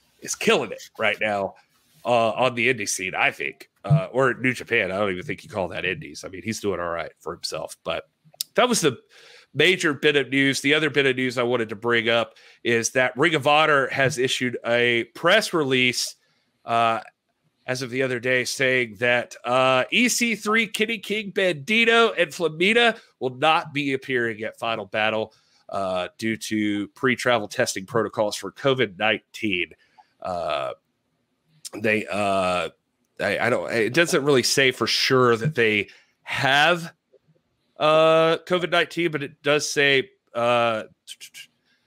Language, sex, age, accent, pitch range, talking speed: English, male, 30-49, American, 115-150 Hz, 160 wpm